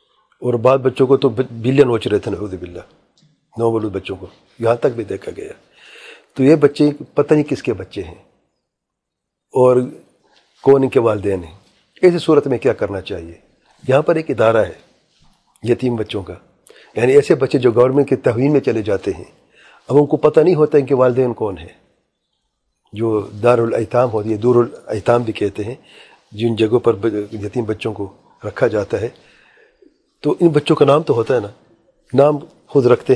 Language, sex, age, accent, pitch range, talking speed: English, male, 40-59, Indian, 110-150 Hz, 150 wpm